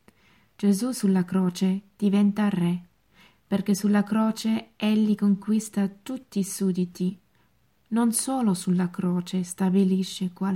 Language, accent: Italian, native